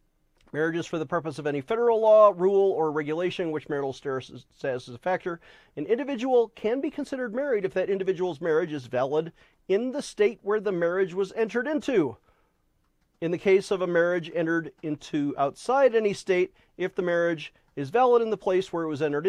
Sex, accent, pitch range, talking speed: male, American, 150-210 Hz, 190 wpm